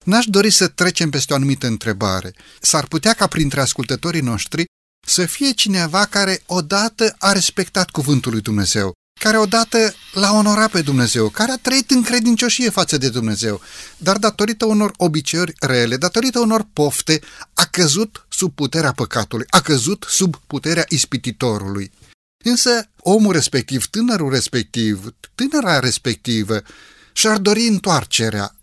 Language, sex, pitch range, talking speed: Romanian, male, 135-205 Hz, 140 wpm